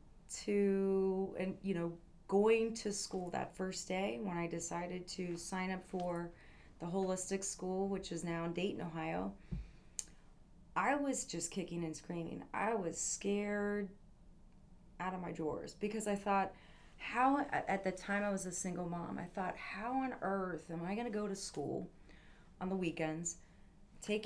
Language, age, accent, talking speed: English, 30-49, American, 165 wpm